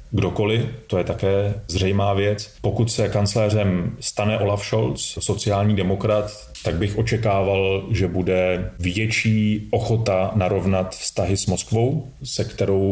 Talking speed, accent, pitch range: 120 wpm, native, 90-105 Hz